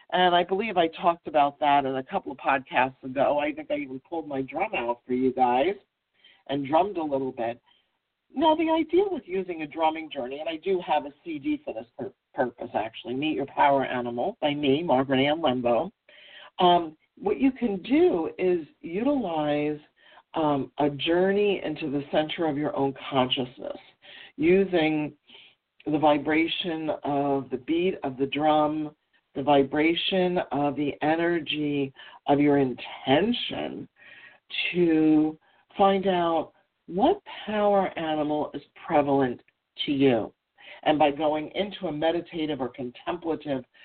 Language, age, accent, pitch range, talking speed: English, 50-69, American, 140-190 Hz, 145 wpm